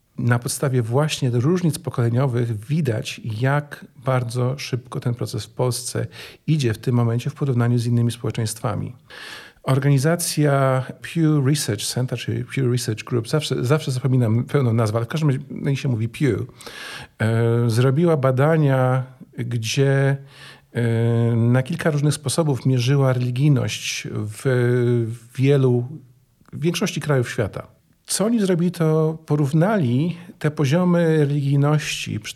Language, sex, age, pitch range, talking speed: Polish, male, 40-59, 120-145 Hz, 120 wpm